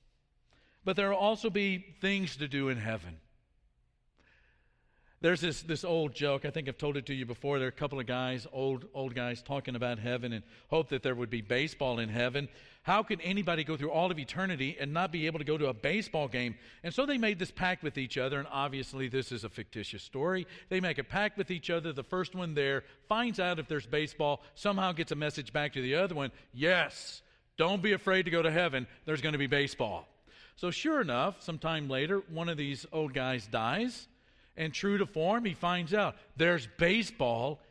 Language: English